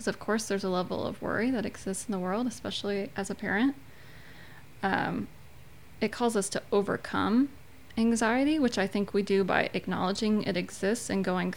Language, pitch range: English, 195-225 Hz